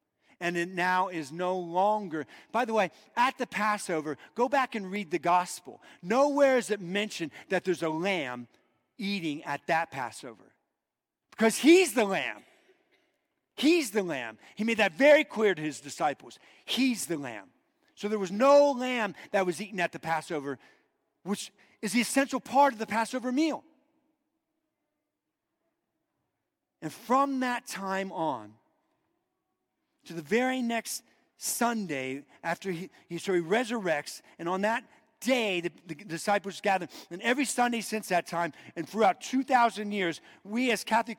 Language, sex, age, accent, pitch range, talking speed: English, male, 50-69, American, 170-260 Hz, 150 wpm